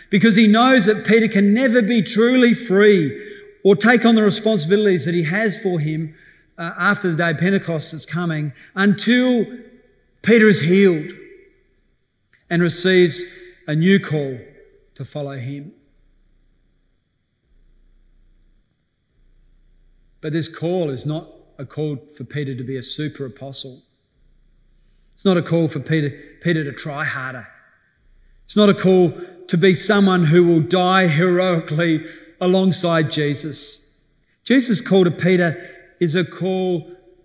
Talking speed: 135 wpm